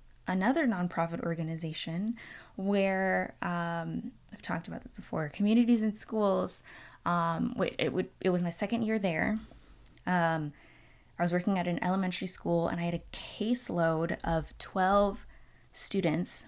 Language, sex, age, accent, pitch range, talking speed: English, female, 20-39, American, 165-195 Hz, 140 wpm